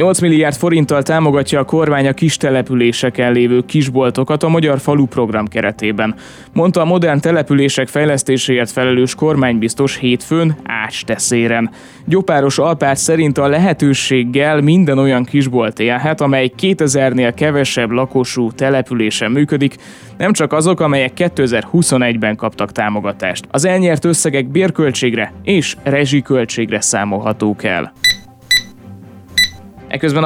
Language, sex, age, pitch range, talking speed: Hungarian, male, 20-39, 125-155 Hz, 110 wpm